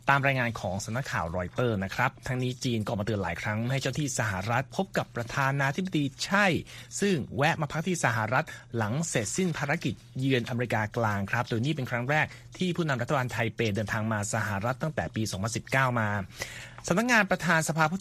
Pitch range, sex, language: 115-155 Hz, male, Thai